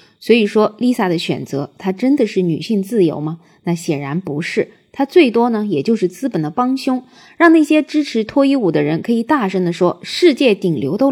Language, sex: Chinese, female